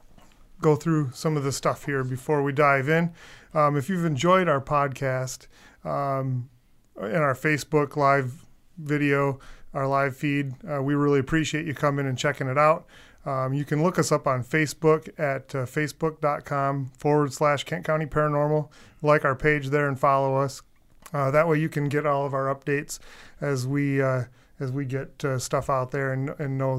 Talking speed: 185 wpm